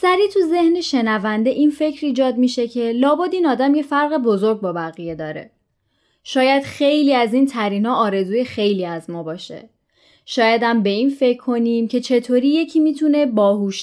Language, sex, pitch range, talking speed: Persian, female, 215-290 Hz, 175 wpm